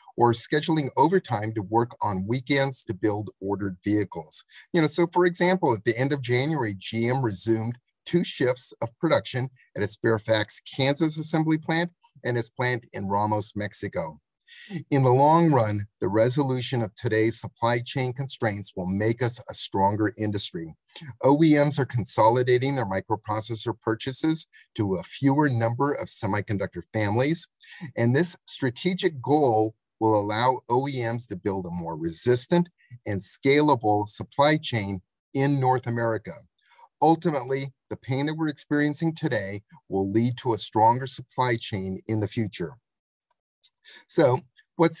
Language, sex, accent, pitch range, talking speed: English, male, American, 110-145 Hz, 145 wpm